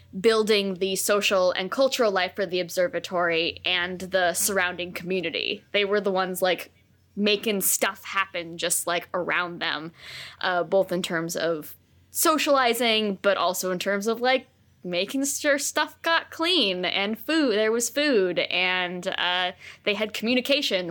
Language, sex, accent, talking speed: English, female, American, 150 wpm